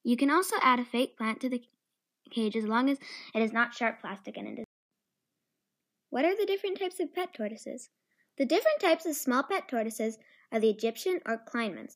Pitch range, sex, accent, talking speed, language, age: 225-320 Hz, female, American, 210 wpm, English, 10-29